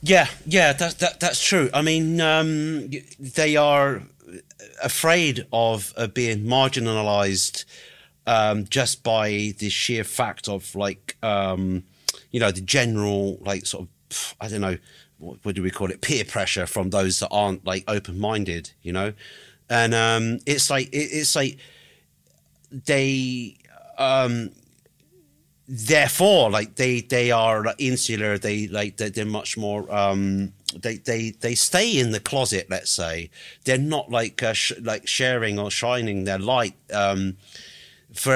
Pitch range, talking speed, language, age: 100-130 Hz, 145 wpm, English, 40-59